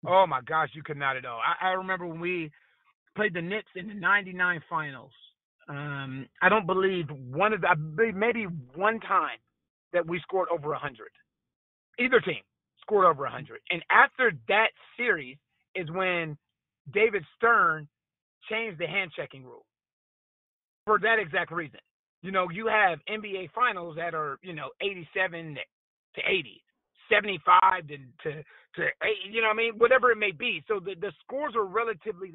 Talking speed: 165 wpm